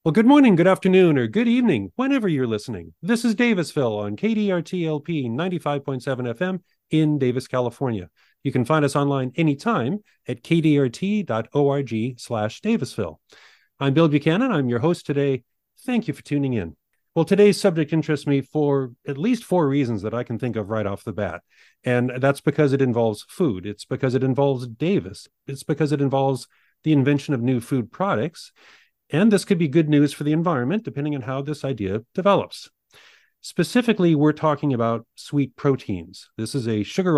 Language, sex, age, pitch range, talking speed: English, male, 40-59, 120-165 Hz, 175 wpm